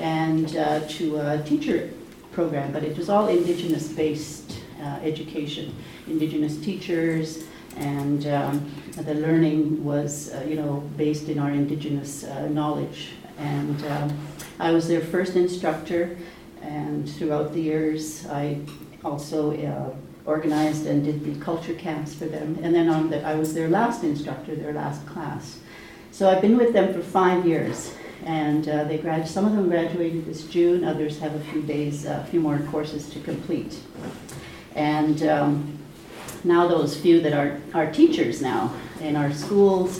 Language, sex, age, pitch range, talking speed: English, female, 60-79, 150-170 Hz, 155 wpm